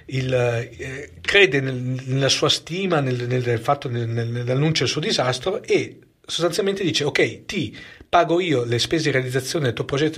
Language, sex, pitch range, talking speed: Italian, male, 120-155 Hz, 185 wpm